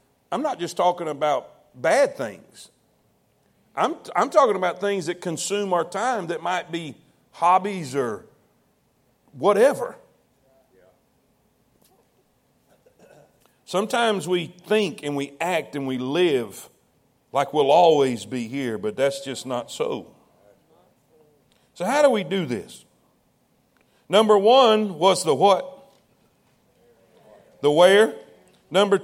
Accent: American